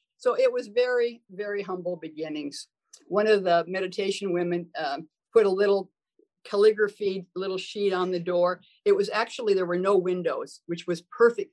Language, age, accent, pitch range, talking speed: English, 50-69, American, 175-220 Hz, 165 wpm